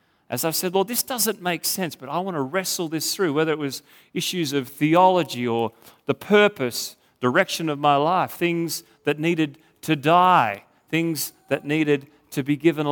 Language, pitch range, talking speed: English, 130-165 Hz, 185 wpm